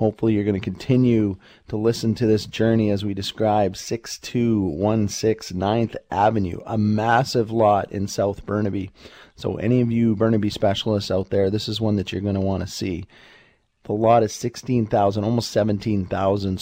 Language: English